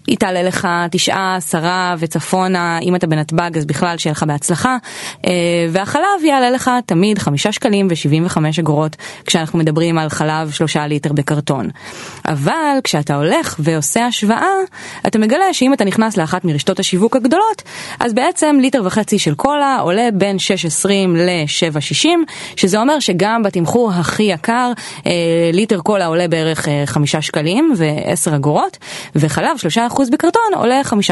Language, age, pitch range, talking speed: Hebrew, 20-39, 165-225 Hz, 145 wpm